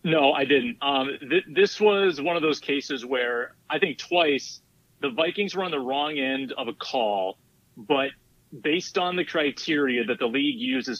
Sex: male